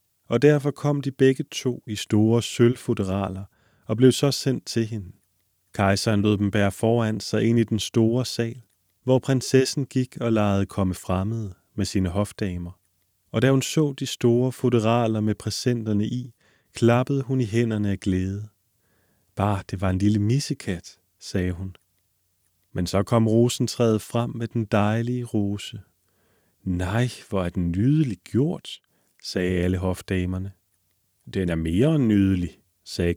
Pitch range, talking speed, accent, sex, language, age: 95-125 Hz, 150 wpm, native, male, Danish, 30-49